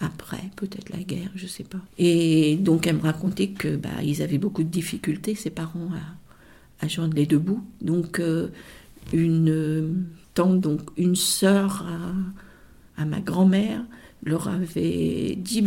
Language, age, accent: French, 50-69, French